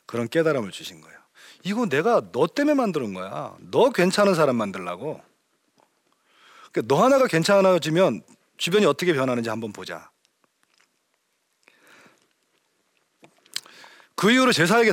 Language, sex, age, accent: Korean, male, 40-59, native